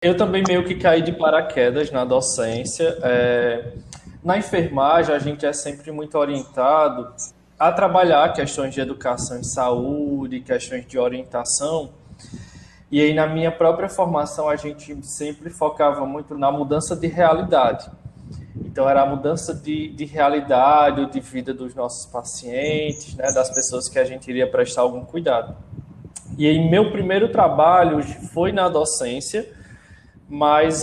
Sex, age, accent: male, 20-39, Brazilian